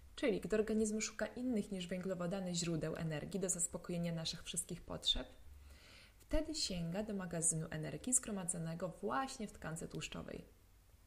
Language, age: Polish, 20-39